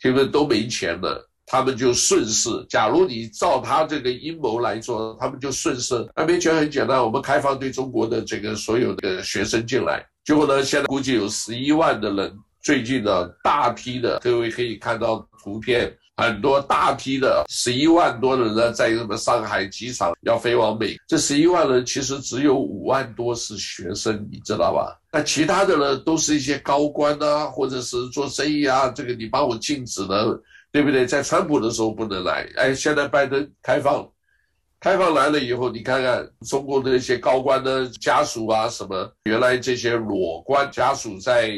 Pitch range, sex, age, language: 120-150 Hz, male, 60-79, Chinese